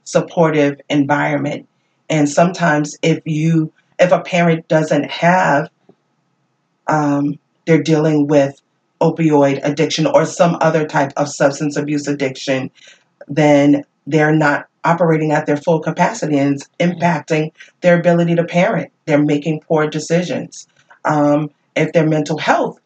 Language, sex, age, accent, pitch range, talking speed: English, female, 30-49, American, 145-165 Hz, 130 wpm